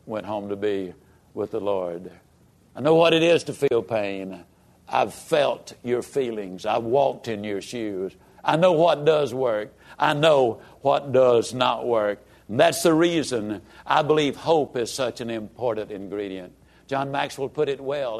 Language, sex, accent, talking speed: English, male, American, 170 wpm